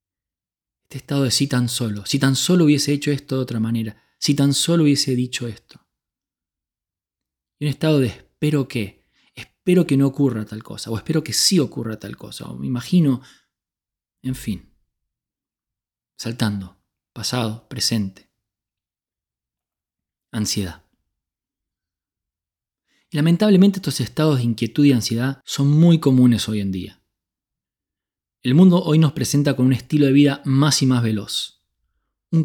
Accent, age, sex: Argentinian, 20-39, male